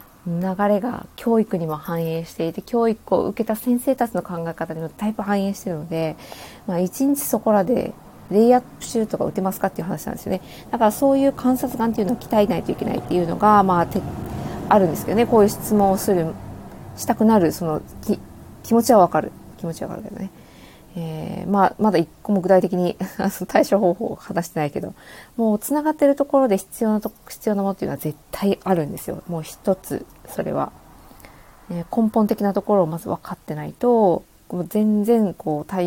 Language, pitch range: Japanese, 175-225 Hz